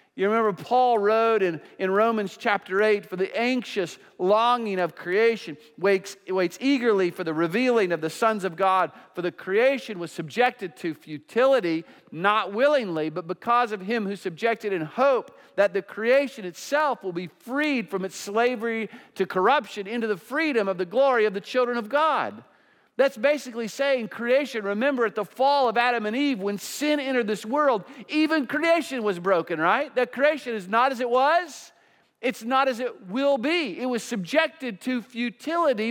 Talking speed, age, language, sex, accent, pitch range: 175 wpm, 50-69, English, male, American, 200-265 Hz